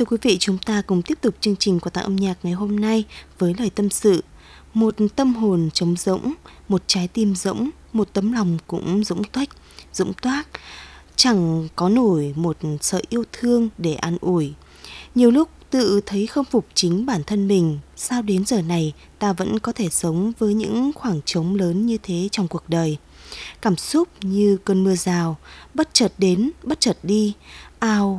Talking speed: 190 wpm